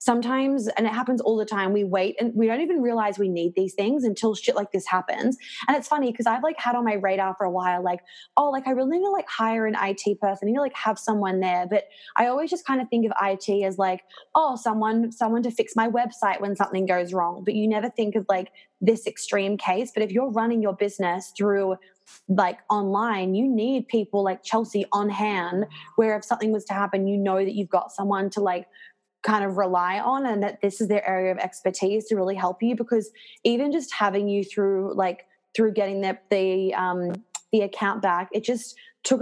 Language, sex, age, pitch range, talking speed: English, female, 20-39, 190-230 Hz, 225 wpm